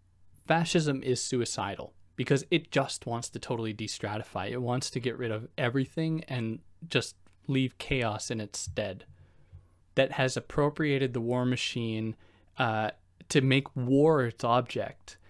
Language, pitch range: English, 105-135 Hz